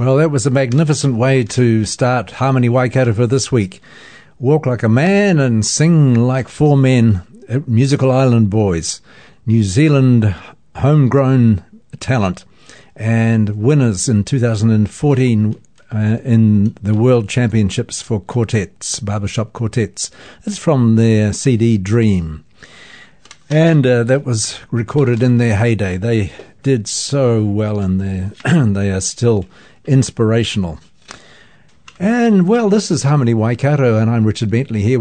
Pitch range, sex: 110-135 Hz, male